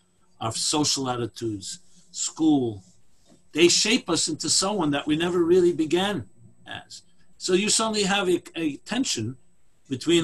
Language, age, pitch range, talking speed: English, 50-69, 150-210 Hz, 135 wpm